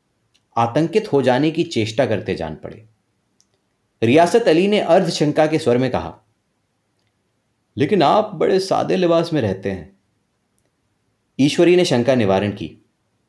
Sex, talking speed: male, 135 wpm